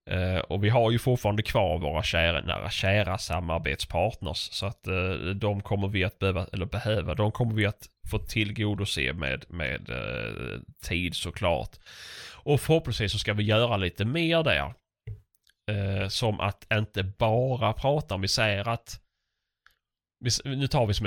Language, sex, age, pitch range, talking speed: Swedish, male, 10-29, 90-110 Hz, 160 wpm